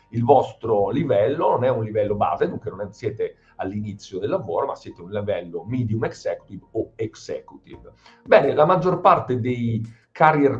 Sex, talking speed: male, 165 wpm